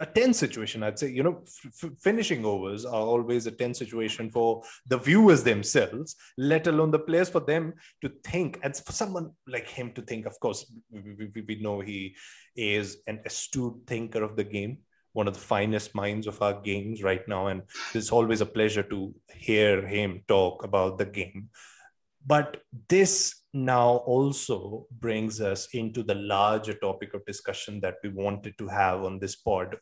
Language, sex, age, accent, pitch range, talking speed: English, male, 20-39, Indian, 100-125 Hz, 180 wpm